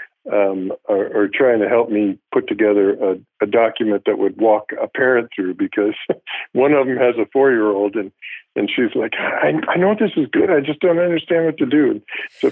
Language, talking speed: English, 210 wpm